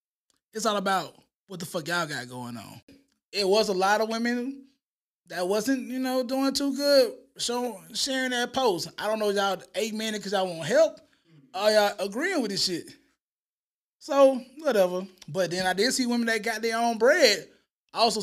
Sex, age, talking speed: male, 20-39, 190 wpm